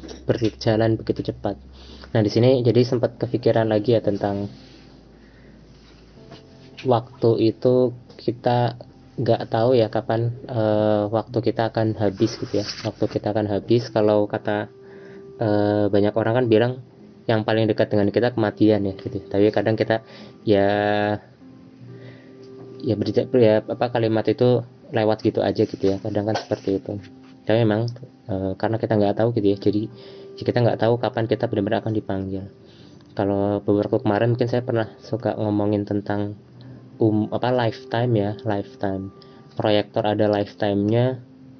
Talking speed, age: 145 wpm, 20-39